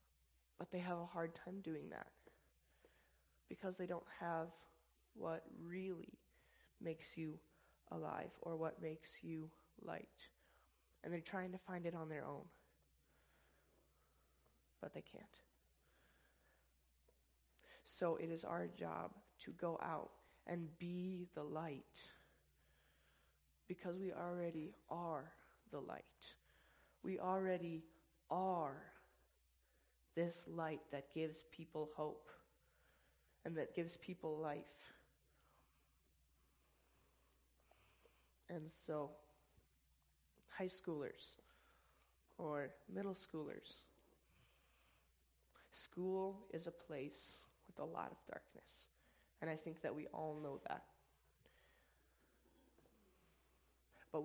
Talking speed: 100 wpm